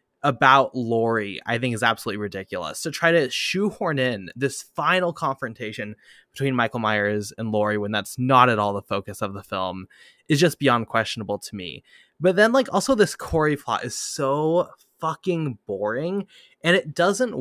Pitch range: 110-155 Hz